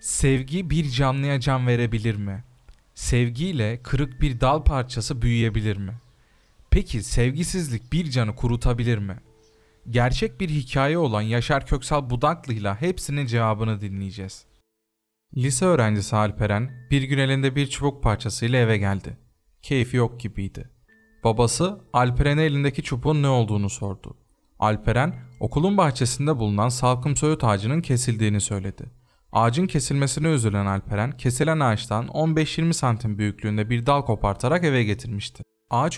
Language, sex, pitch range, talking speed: Turkish, male, 110-145 Hz, 125 wpm